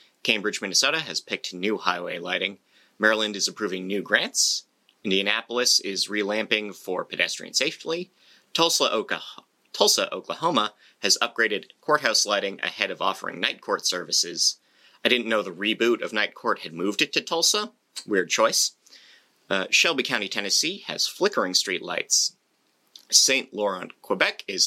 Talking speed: 140 wpm